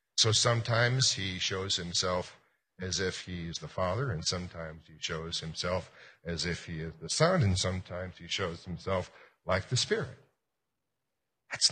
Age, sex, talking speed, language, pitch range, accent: 50-69, male, 160 wpm, English, 120-145 Hz, American